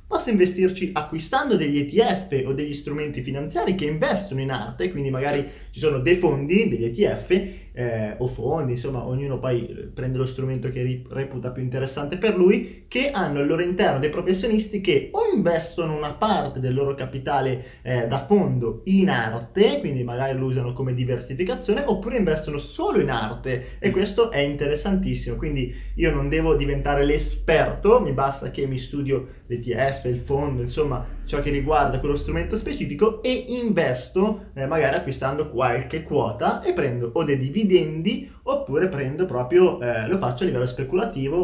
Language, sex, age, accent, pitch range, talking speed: Italian, male, 20-39, native, 125-175 Hz, 165 wpm